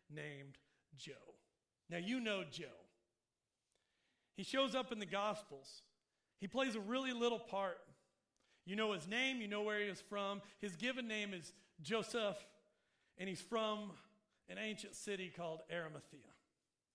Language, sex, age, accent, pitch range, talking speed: English, male, 40-59, American, 180-225 Hz, 145 wpm